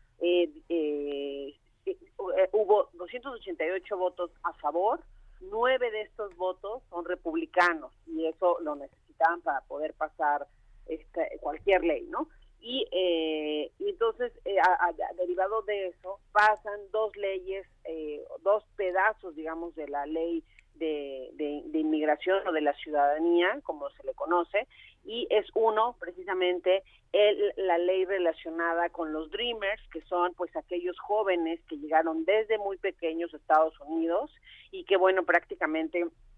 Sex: female